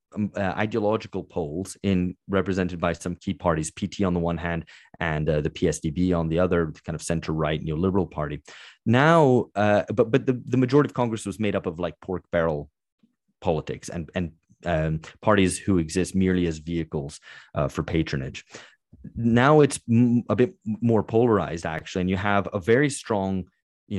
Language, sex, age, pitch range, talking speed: English, male, 30-49, 85-105 Hz, 175 wpm